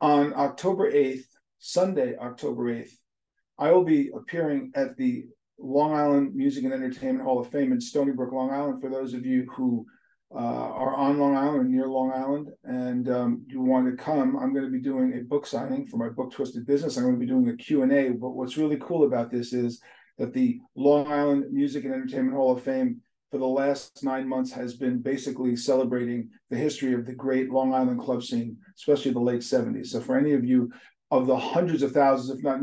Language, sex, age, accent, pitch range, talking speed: English, male, 40-59, American, 125-180 Hz, 210 wpm